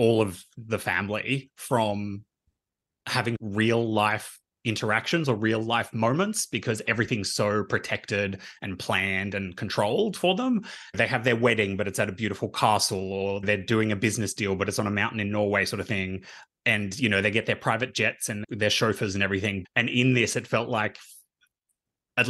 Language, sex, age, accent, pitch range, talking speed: English, male, 20-39, Australian, 100-115 Hz, 185 wpm